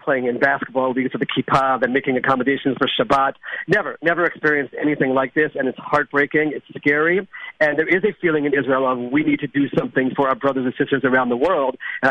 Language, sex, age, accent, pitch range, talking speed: English, male, 50-69, American, 140-175 Hz, 225 wpm